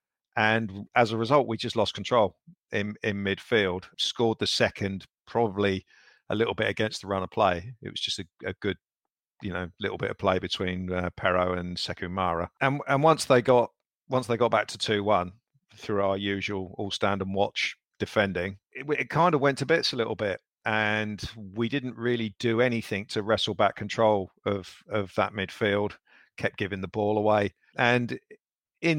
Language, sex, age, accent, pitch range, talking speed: English, male, 50-69, British, 100-115 Hz, 190 wpm